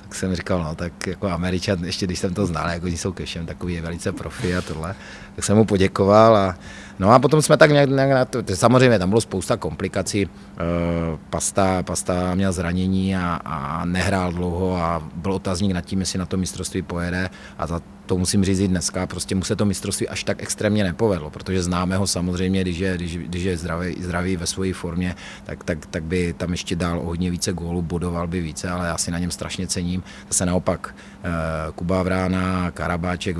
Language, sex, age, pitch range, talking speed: Czech, male, 30-49, 85-95 Hz, 210 wpm